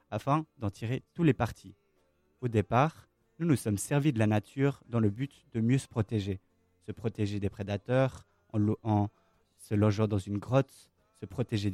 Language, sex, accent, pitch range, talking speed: French, male, French, 105-135 Hz, 185 wpm